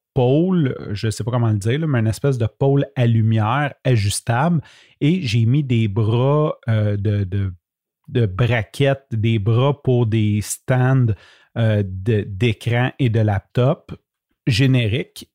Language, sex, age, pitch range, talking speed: French, male, 30-49, 110-145 Hz, 155 wpm